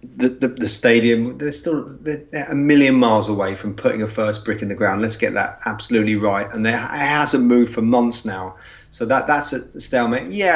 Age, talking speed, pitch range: 30-49, 215 wpm, 105-120 Hz